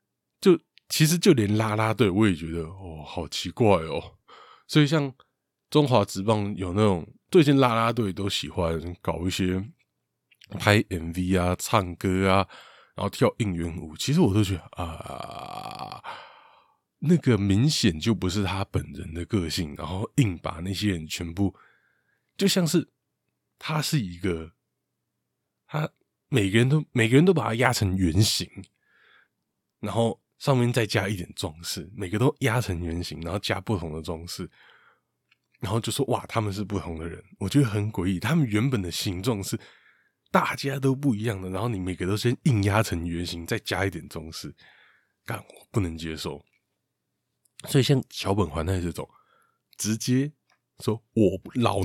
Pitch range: 90-125 Hz